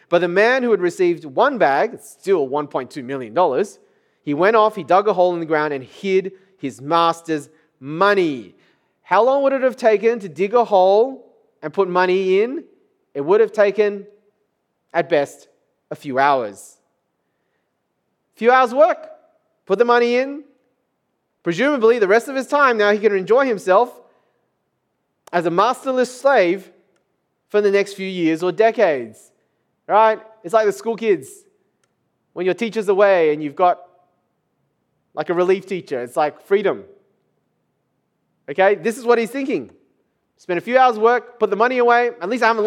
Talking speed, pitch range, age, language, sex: 165 wpm, 180-255 Hz, 30-49, English, male